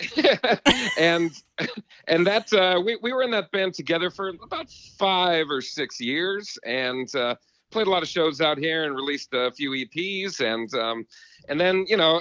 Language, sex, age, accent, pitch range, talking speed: English, male, 40-59, American, 110-150 Hz, 180 wpm